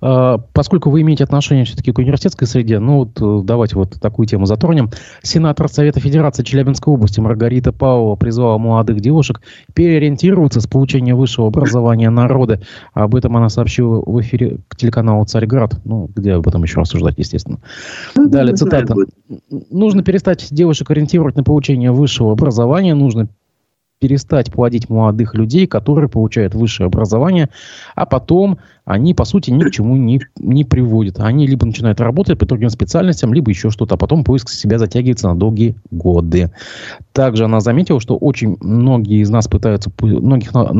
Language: Russian